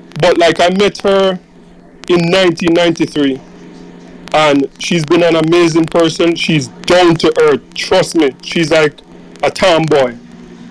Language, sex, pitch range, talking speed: English, male, 150-190 Hz, 130 wpm